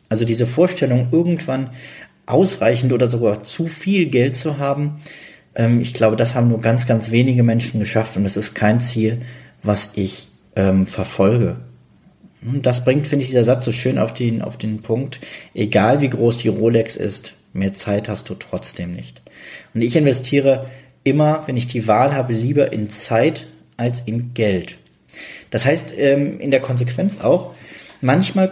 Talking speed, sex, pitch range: 160 wpm, male, 105-135 Hz